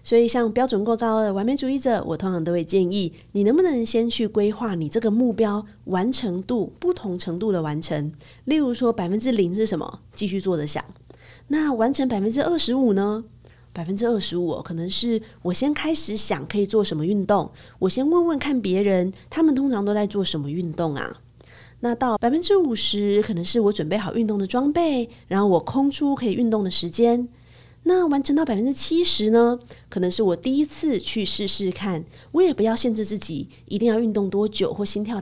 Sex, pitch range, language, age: female, 180-245 Hz, Chinese, 30-49